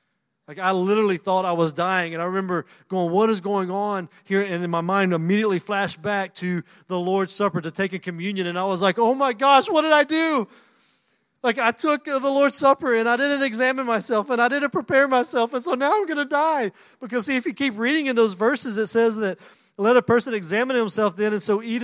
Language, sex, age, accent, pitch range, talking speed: English, male, 30-49, American, 195-265 Hz, 235 wpm